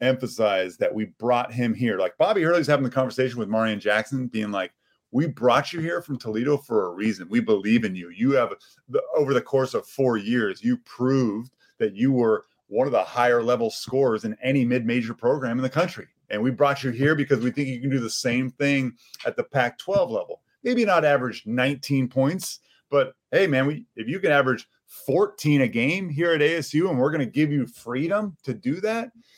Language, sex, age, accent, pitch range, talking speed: English, male, 30-49, American, 120-155 Hz, 215 wpm